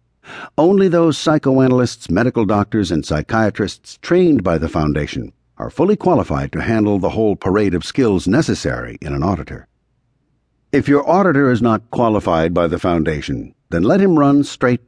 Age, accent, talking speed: 60-79, American, 155 wpm